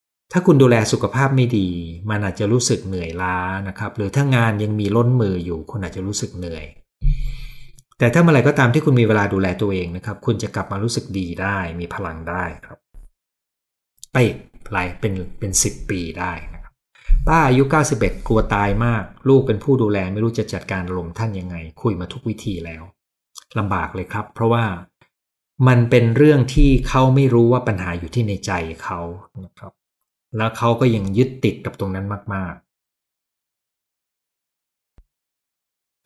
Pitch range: 90-120 Hz